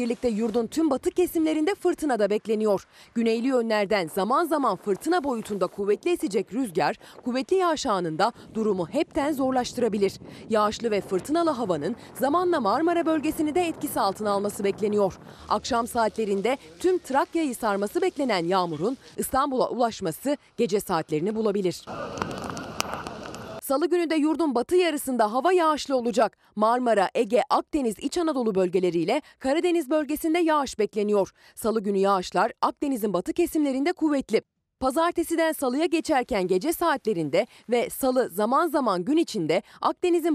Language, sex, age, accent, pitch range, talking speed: Turkish, female, 30-49, native, 205-310 Hz, 125 wpm